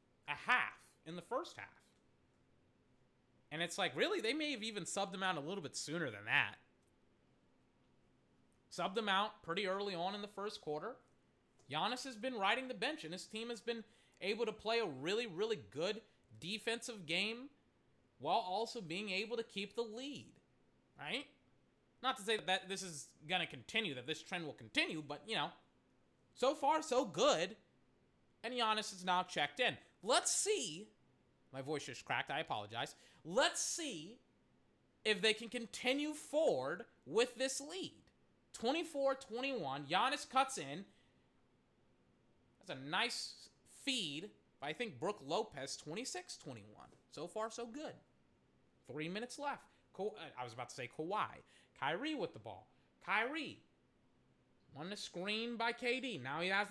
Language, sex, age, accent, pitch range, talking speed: English, male, 30-49, American, 170-245 Hz, 155 wpm